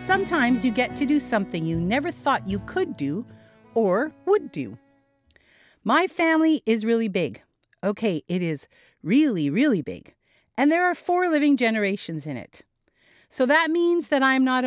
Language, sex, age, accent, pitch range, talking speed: English, female, 50-69, American, 190-310 Hz, 165 wpm